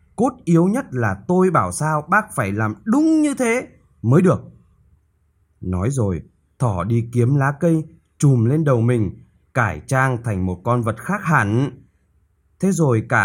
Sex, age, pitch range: male, 20-39, 105-160 Hz